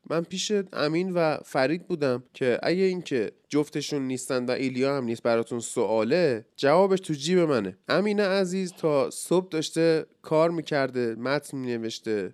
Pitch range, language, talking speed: 135-185 Hz, Persian, 145 wpm